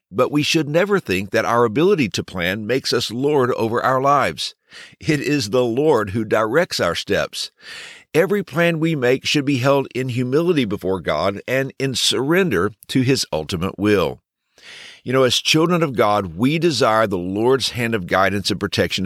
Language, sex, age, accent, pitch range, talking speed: English, male, 60-79, American, 100-155 Hz, 180 wpm